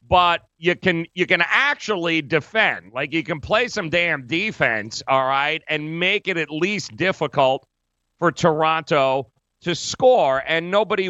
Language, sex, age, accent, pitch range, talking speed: English, male, 40-59, American, 125-170 Hz, 150 wpm